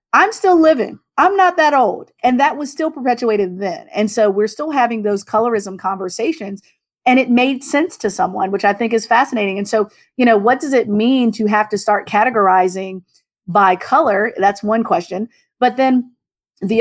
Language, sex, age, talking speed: English, female, 40-59, 190 wpm